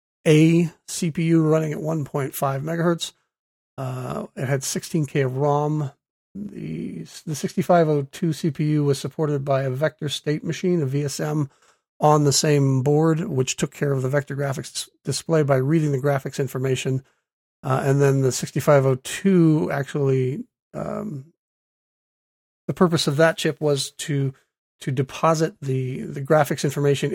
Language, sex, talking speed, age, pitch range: English, male, 140 wpm, 40-59, 140-165 Hz